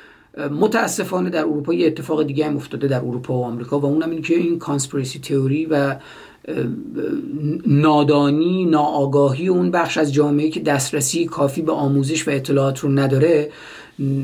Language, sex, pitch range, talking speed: Persian, male, 145-180 Hz, 145 wpm